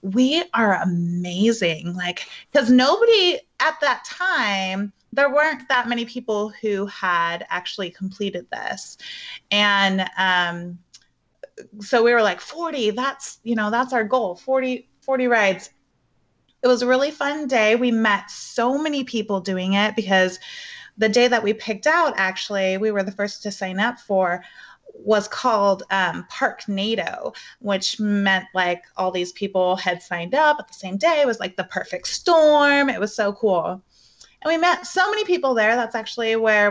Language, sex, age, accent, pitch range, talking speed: English, female, 30-49, American, 190-245 Hz, 165 wpm